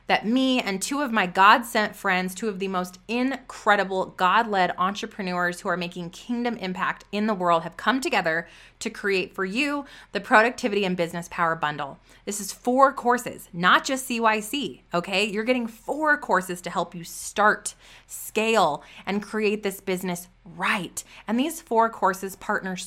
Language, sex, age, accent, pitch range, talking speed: English, female, 20-39, American, 180-230 Hz, 170 wpm